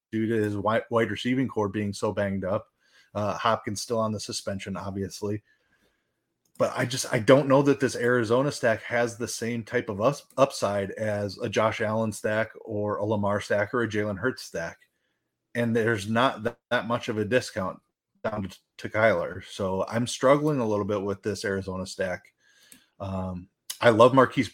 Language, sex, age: English, male, 30-49